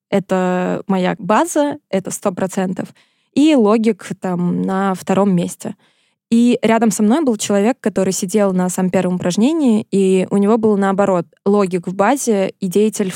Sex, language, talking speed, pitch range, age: female, Russian, 150 wpm, 190-225 Hz, 20-39